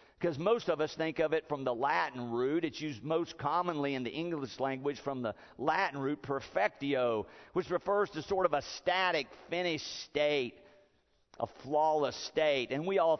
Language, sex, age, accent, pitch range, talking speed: English, male, 50-69, American, 110-160 Hz, 175 wpm